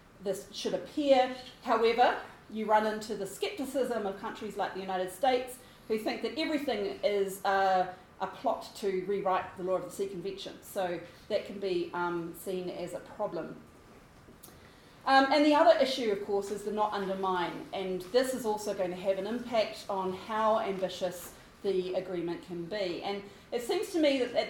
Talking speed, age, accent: 180 wpm, 30-49, Australian